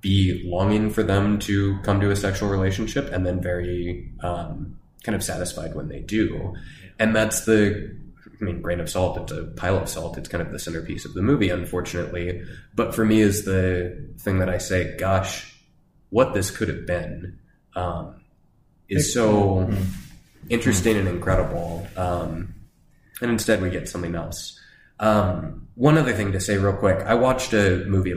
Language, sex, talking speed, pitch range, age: English, male, 175 wpm, 90-105 Hz, 20-39